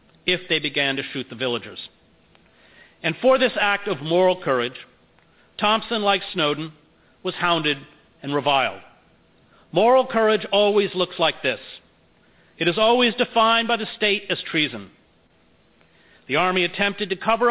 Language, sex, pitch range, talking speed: English, male, 145-210 Hz, 140 wpm